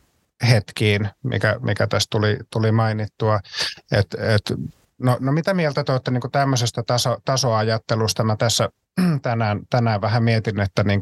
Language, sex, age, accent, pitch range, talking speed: Finnish, male, 30-49, native, 110-125 Hz, 150 wpm